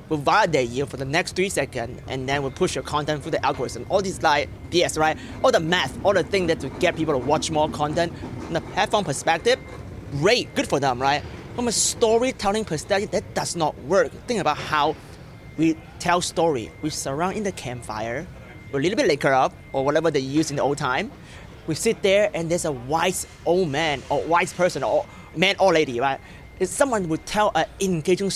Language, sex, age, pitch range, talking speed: English, male, 30-49, 140-185 Hz, 215 wpm